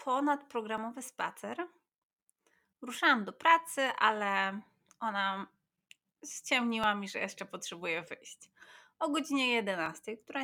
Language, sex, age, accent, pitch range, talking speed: Polish, female, 20-39, native, 200-275 Hz, 100 wpm